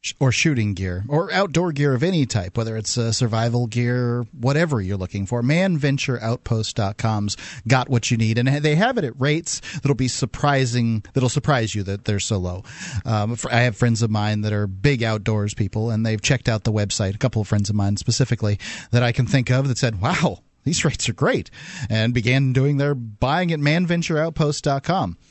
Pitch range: 110-140 Hz